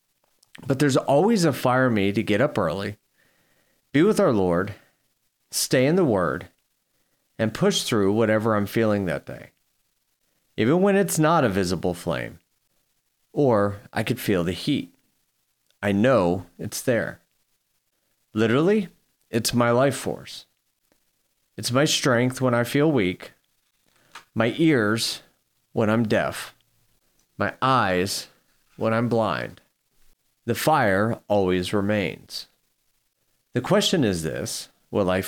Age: 40-59